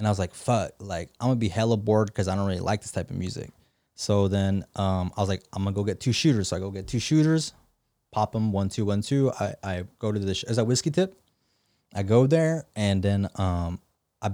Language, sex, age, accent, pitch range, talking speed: English, male, 20-39, American, 105-135 Hz, 265 wpm